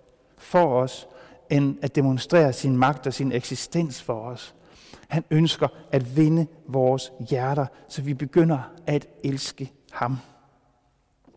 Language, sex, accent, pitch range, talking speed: Danish, male, native, 125-155 Hz, 125 wpm